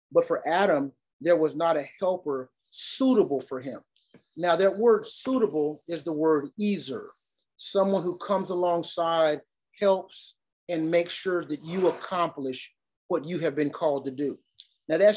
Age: 30-49